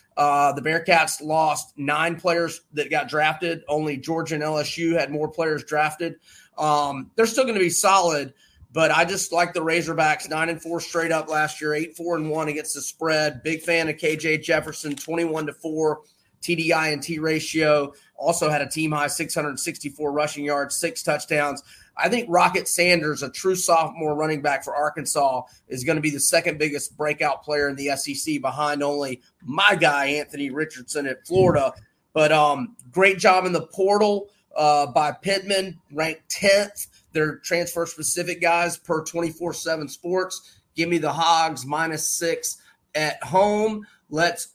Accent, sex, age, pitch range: American, male, 30-49, 150-170 Hz